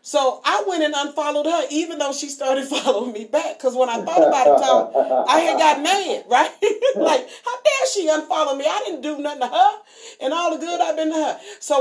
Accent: American